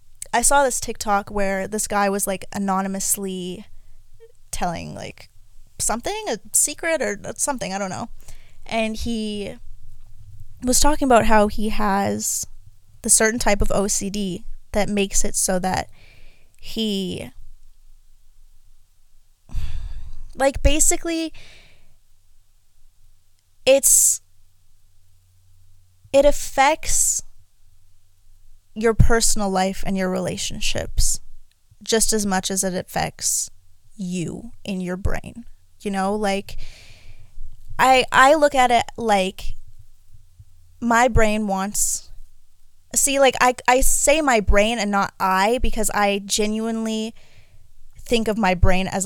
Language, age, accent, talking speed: English, 20-39, American, 110 wpm